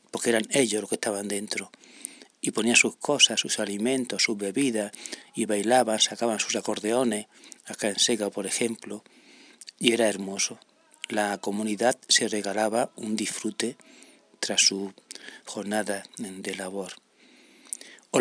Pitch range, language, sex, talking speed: 105-130 Hz, Spanish, male, 130 wpm